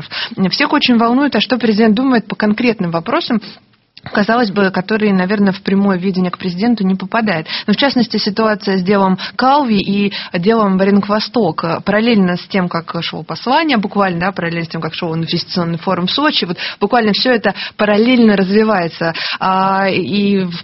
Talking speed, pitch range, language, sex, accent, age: 165 wpm, 175-220 Hz, Russian, female, native, 20-39